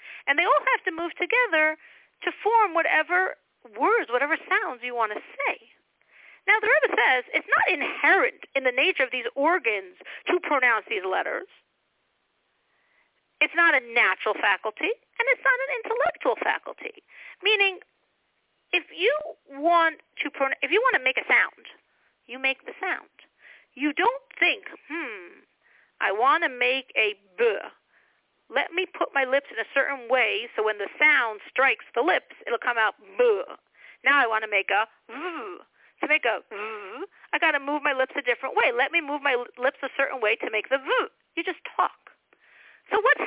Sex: female